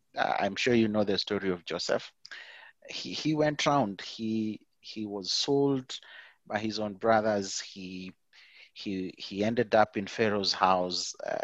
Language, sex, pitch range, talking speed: English, male, 95-125 Hz, 150 wpm